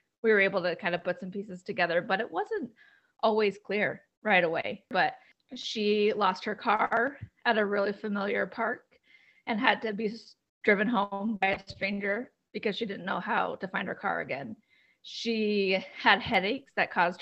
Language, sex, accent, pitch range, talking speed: English, female, American, 180-210 Hz, 180 wpm